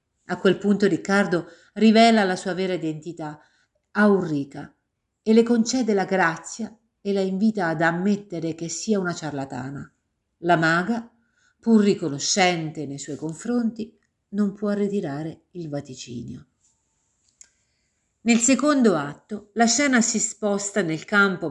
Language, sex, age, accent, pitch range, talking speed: Italian, female, 50-69, native, 155-210 Hz, 130 wpm